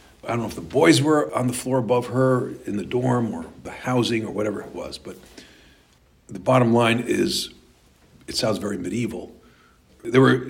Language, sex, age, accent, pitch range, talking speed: English, male, 50-69, American, 100-125 Hz, 190 wpm